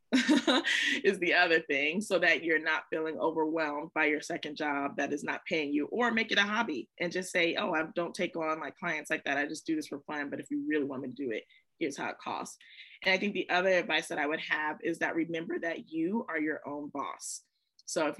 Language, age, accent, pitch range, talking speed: English, 20-39, American, 160-210 Hz, 250 wpm